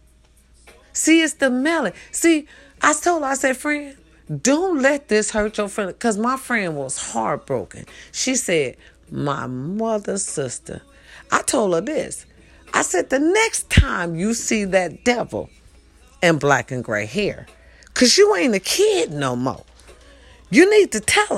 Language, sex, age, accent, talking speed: English, female, 40-59, American, 155 wpm